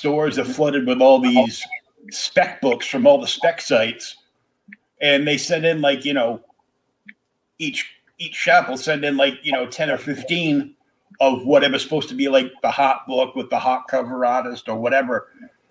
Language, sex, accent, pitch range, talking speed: English, male, American, 125-160 Hz, 180 wpm